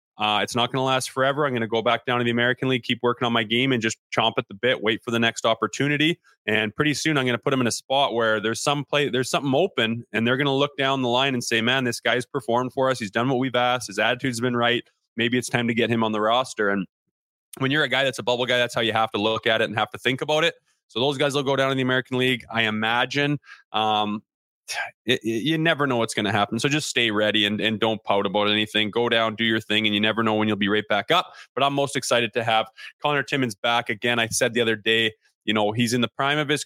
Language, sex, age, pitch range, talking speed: English, male, 20-39, 110-130 Hz, 295 wpm